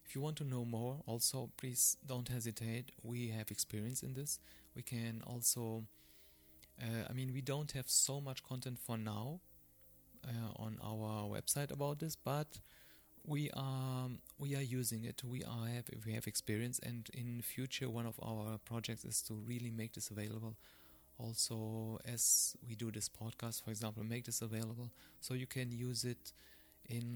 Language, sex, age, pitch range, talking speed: English, male, 30-49, 110-130 Hz, 165 wpm